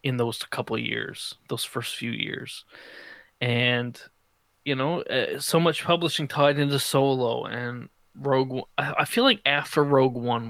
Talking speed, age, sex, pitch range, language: 155 wpm, 20-39, male, 120-145 Hz, English